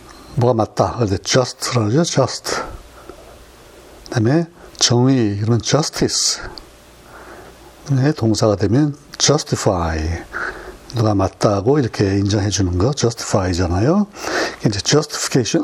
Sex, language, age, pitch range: male, Korean, 60-79, 105-140 Hz